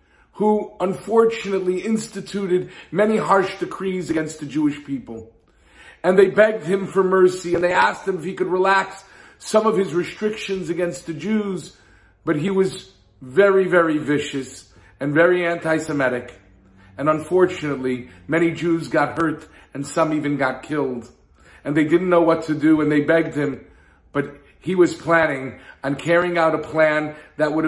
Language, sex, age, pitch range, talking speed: English, male, 50-69, 145-190 Hz, 160 wpm